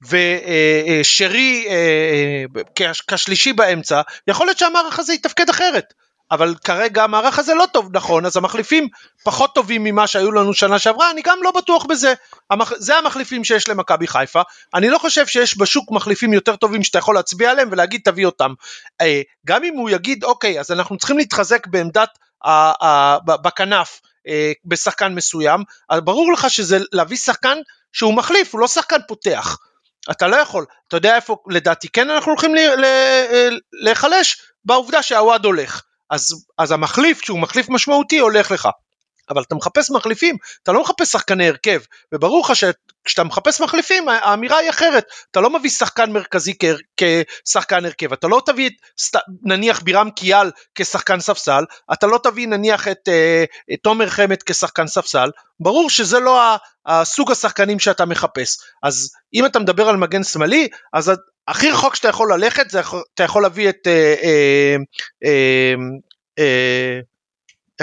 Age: 30-49